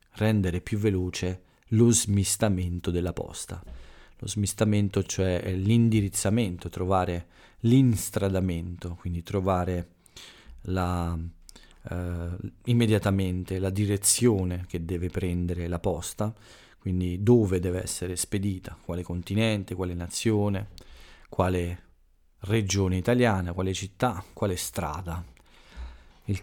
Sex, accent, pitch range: male, native, 90-105 Hz